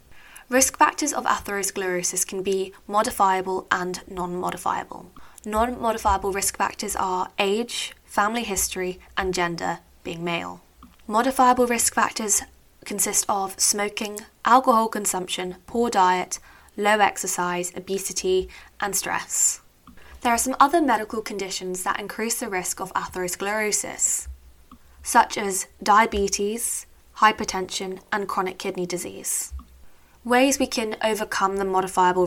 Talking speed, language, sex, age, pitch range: 115 wpm, English, female, 10-29, 180-215 Hz